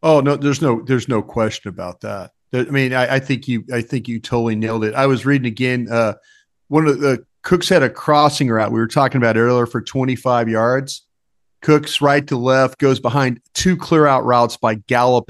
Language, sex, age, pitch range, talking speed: English, male, 40-59, 120-150 Hz, 215 wpm